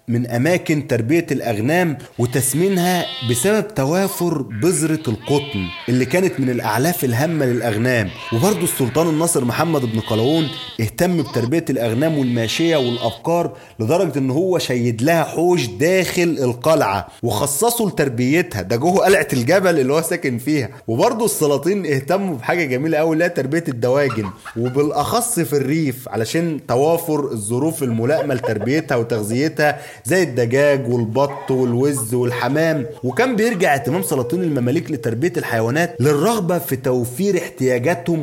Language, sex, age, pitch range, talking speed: Arabic, male, 30-49, 120-165 Hz, 120 wpm